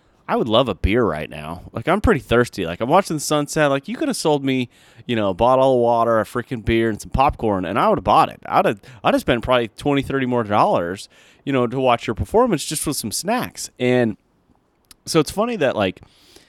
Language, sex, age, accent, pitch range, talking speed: English, male, 30-49, American, 100-135 Hz, 240 wpm